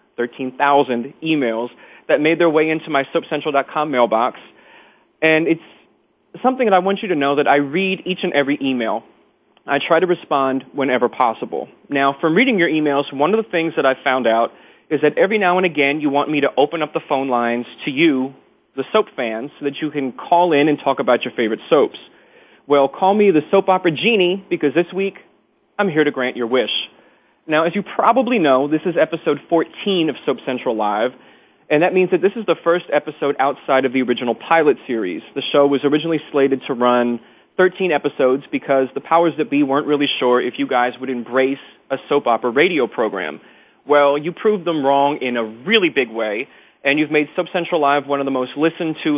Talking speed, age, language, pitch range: 205 wpm, 30-49, English, 135-170 Hz